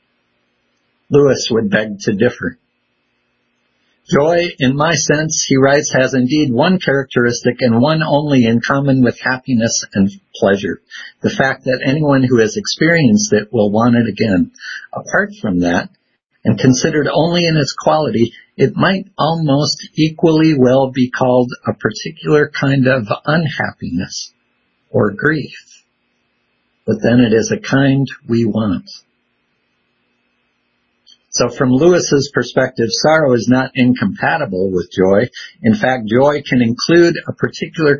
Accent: American